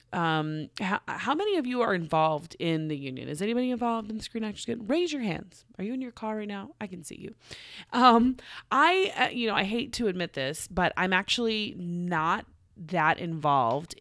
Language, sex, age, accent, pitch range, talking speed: English, female, 30-49, American, 150-205 Hz, 210 wpm